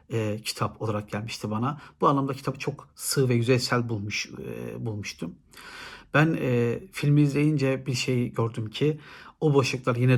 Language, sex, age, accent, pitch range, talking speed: Turkish, male, 60-79, native, 120-140 Hz, 155 wpm